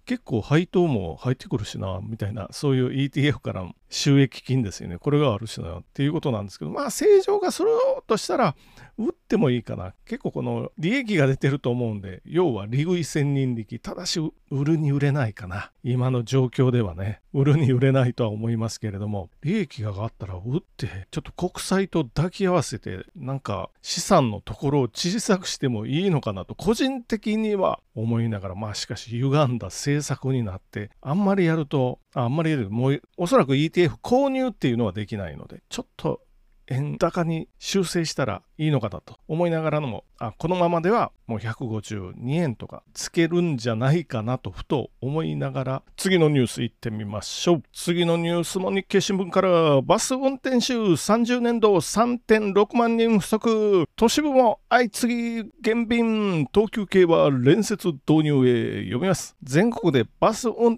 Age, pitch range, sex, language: 40-59, 120-190 Hz, male, Japanese